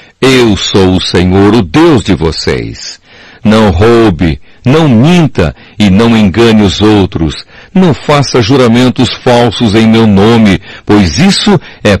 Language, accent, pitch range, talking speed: Portuguese, Brazilian, 100-140 Hz, 135 wpm